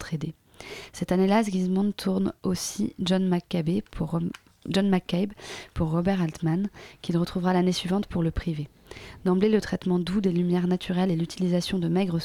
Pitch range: 165-190 Hz